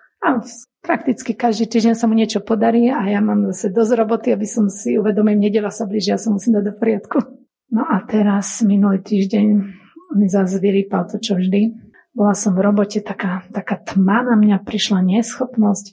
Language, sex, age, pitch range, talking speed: Slovak, female, 30-49, 195-225 Hz, 185 wpm